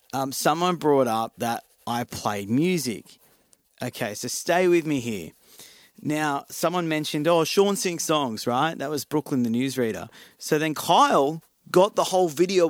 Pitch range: 120-155 Hz